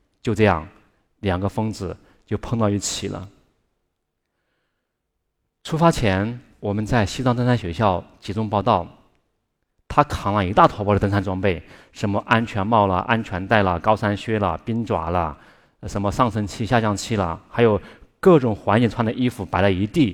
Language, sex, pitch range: Chinese, male, 100-130 Hz